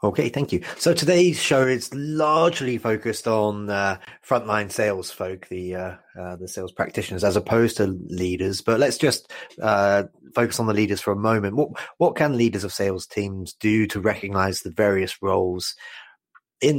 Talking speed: 175 wpm